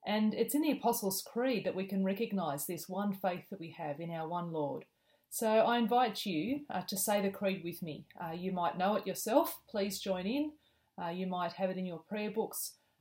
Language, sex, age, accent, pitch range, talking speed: English, female, 40-59, Australian, 170-220 Hz, 225 wpm